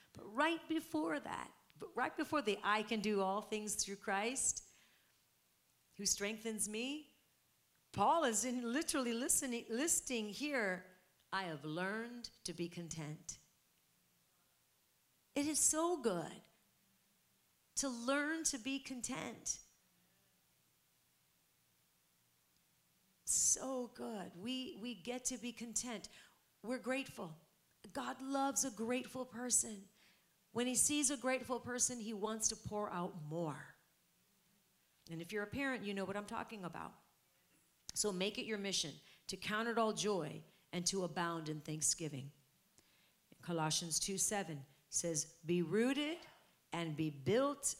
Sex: female